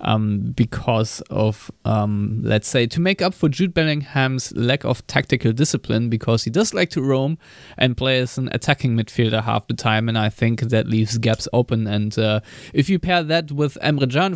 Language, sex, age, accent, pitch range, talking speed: English, male, 20-39, German, 110-135 Hz, 195 wpm